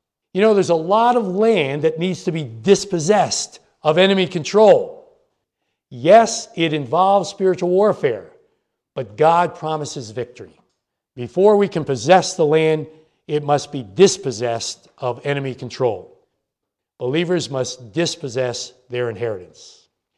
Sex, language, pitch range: male, English, 140-195 Hz